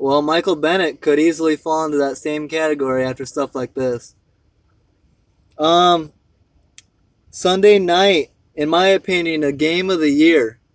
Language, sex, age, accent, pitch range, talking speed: English, male, 20-39, American, 140-175 Hz, 140 wpm